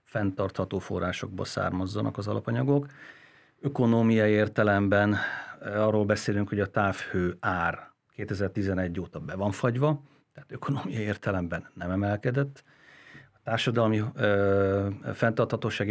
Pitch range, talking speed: 95-115 Hz, 100 wpm